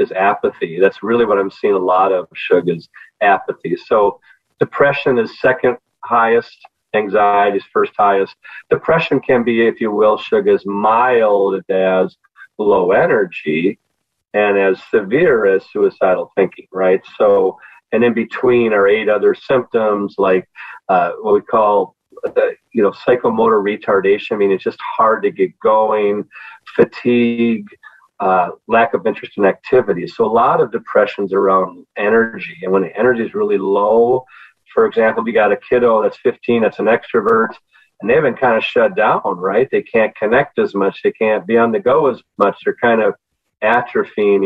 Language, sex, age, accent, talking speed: English, male, 40-59, American, 165 wpm